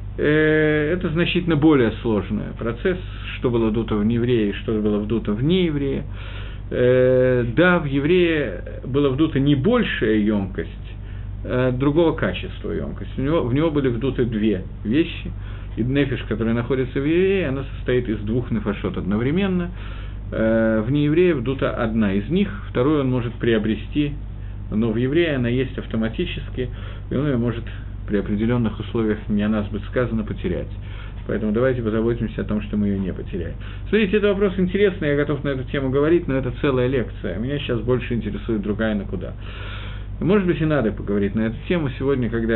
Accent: native